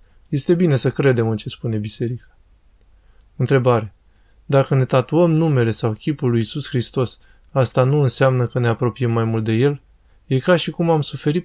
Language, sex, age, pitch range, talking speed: Romanian, male, 20-39, 115-140 Hz, 180 wpm